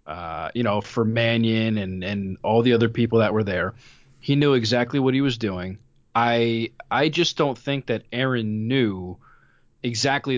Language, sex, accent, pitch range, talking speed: English, male, American, 110-135 Hz, 175 wpm